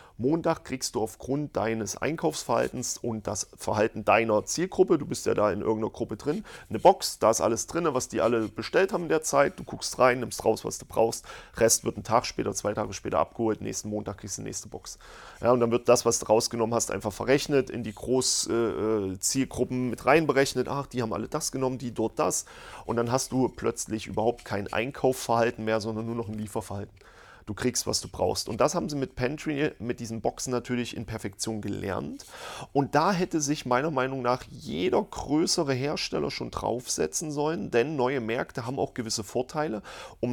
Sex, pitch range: male, 110-130 Hz